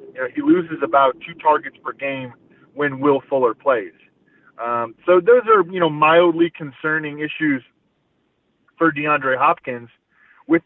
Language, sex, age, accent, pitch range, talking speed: English, male, 20-39, American, 140-175 Hz, 145 wpm